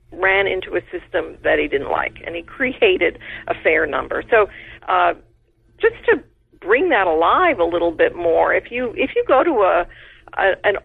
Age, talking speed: 50-69, 190 wpm